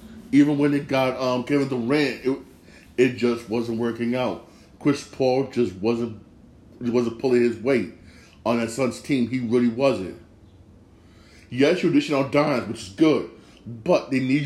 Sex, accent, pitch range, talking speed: male, American, 115-140 Hz, 160 wpm